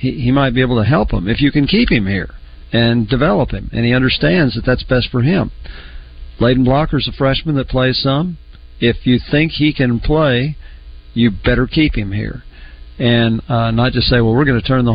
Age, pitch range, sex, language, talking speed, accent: 50-69, 105-135 Hz, male, English, 215 wpm, American